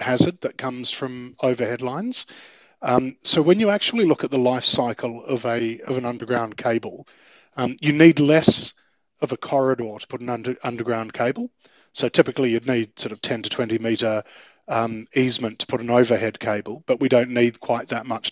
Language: English